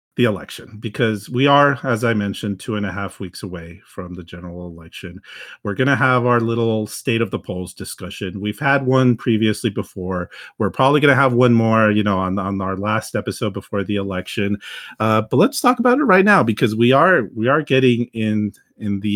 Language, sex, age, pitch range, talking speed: English, male, 40-59, 100-130 Hz, 215 wpm